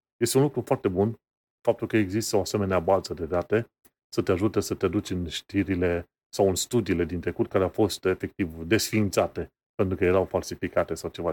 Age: 30-49